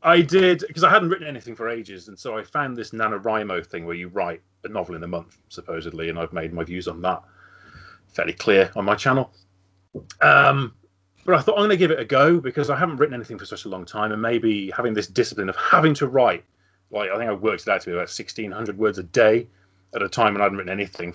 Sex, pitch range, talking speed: male, 95-135 Hz, 250 wpm